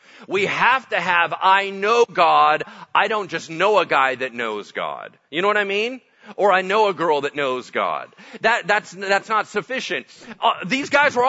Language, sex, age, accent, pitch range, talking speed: English, male, 40-59, American, 185-255 Hz, 200 wpm